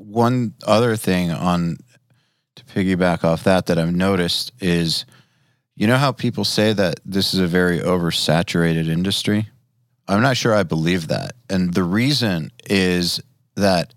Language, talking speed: English, 150 wpm